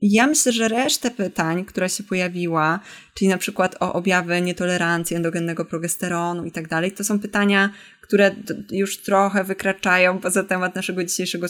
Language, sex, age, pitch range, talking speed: Polish, female, 20-39, 165-205 Hz, 155 wpm